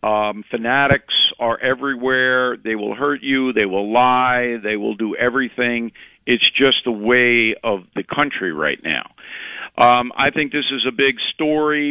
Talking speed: 160 wpm